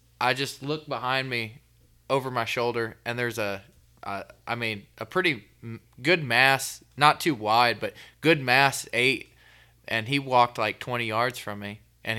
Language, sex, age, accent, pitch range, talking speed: English, male, 20-39, American, 105-125 Hz, 170 wpm